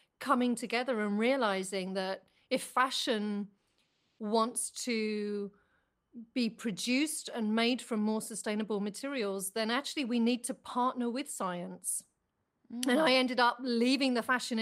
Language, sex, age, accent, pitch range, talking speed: English, female, 40-59, British, 200-240 Hz, 130 wpm